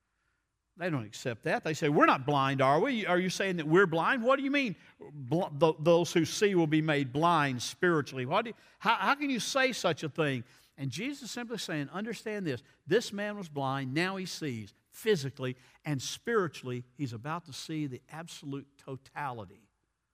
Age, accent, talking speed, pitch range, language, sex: 60-79, American, 190 wpm, 135-185 Hz, English, male